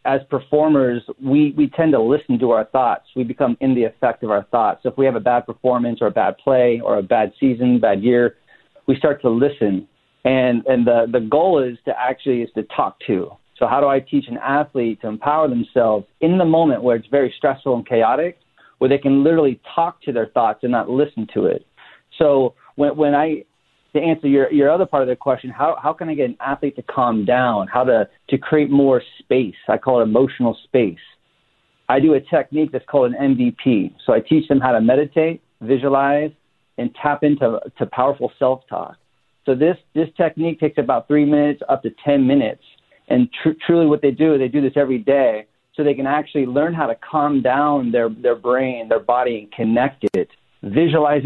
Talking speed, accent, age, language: 210 wpm, American, 40-59, English